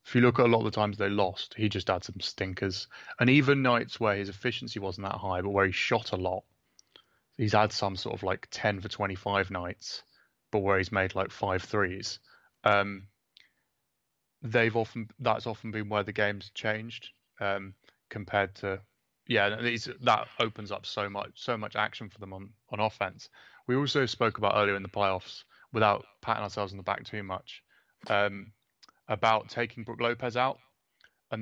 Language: English